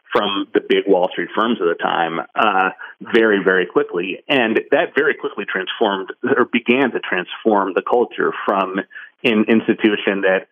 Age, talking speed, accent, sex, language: 30-49, 160 wpm, American, male, English